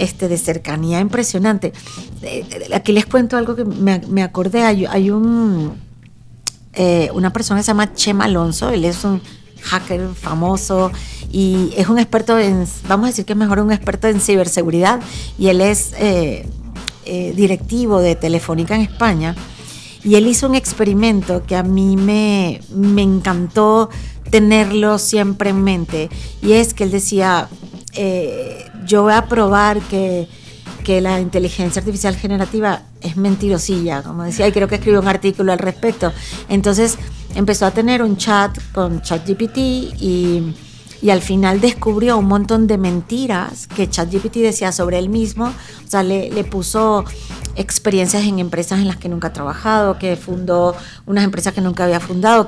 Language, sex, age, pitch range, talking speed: Spanish, female, 40-59, 180-210 Hz, 160 wpm